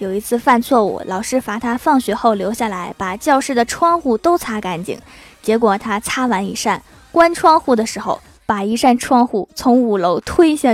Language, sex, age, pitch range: Chinese, female, 20-39, 215-265 Hz